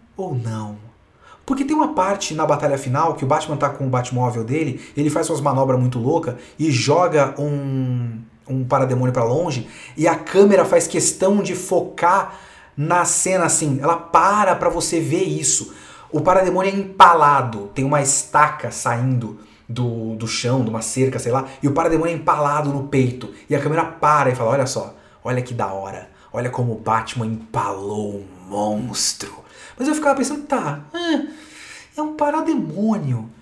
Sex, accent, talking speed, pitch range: male, Brazilian, 170 wpm, 125-200 Hz